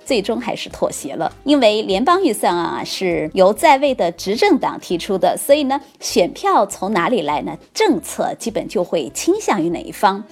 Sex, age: female, 20-39